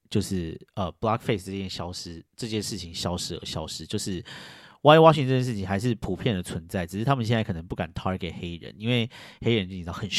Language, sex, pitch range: Chinese, male, 95-135 Hz